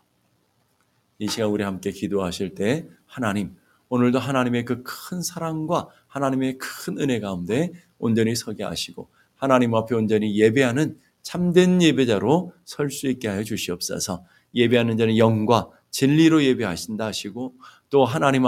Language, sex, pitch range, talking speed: English, male, 110-155 Hz, 115 wpm